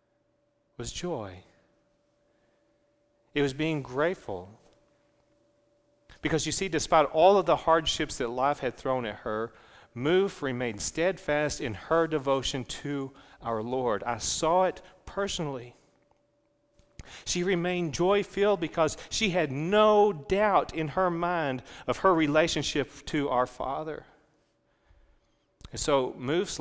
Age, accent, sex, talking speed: 40-59, American, male, 120 wpm